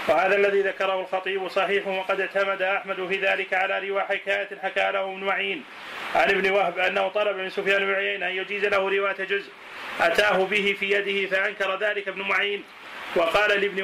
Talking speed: 175 wpm